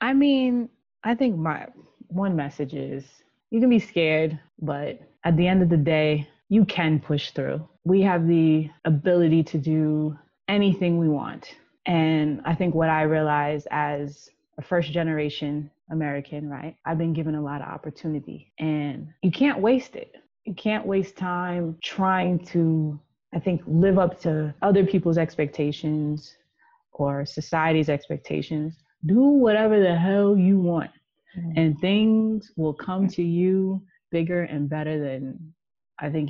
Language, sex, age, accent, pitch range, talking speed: English, female, 20-39, American, 155-215 Hz, 150 wpm